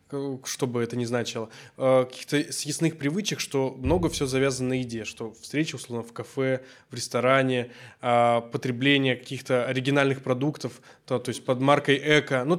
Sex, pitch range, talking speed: male, 120-145 Hz, 155 wpm